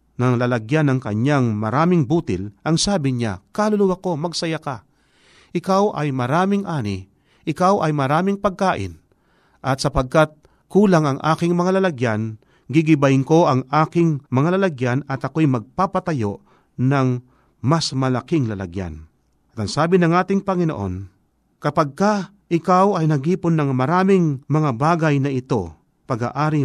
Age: 40-59